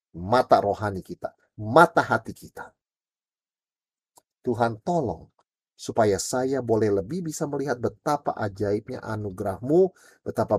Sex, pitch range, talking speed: male, 105-140 Hz, 100 wpm